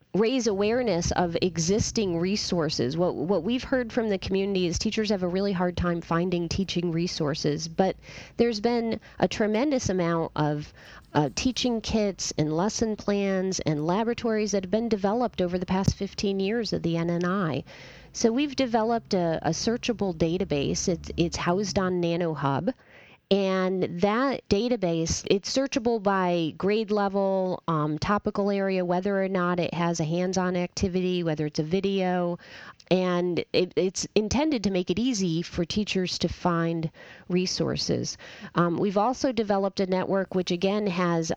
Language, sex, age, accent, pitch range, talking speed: English, female, 30-49, American, 170-210 Hz, 155 wpm